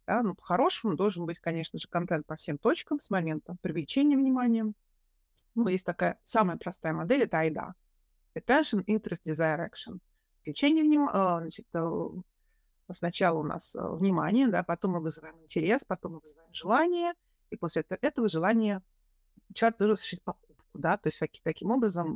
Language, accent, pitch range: Russian, native, 170-215 Hz